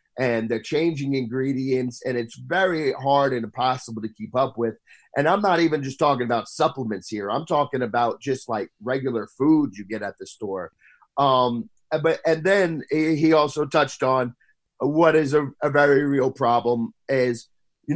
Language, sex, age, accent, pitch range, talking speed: English, male, 30-49, American, 130-160 Hz, 170 wpm